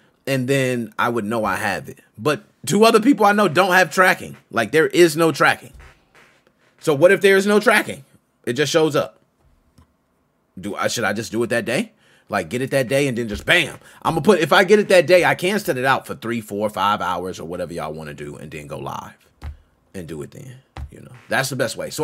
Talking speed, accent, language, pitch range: 250 wpm, American, English, 105-160 Hz